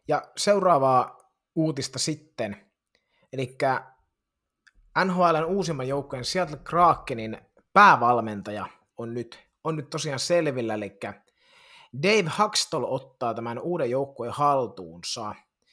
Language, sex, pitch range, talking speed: Finnish, male, 115-150 Hz, 95 wpm